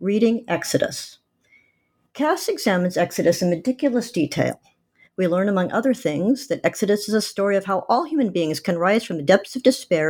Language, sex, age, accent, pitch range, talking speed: English, male, 50-69, American, 170-240 Hz, 180 wpm